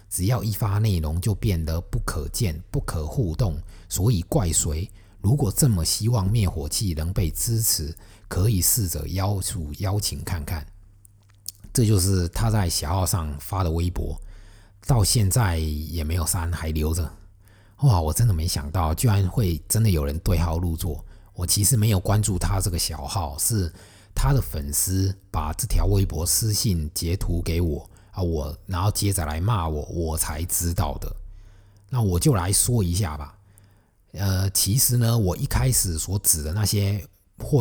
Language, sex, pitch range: Chinese, male, 85-105 Hz